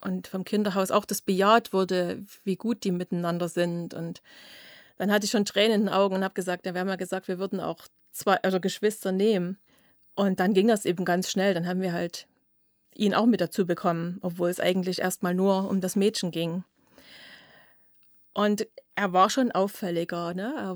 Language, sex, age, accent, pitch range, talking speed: German, female, 30-49, German, 180-200 Hz, 195 wpm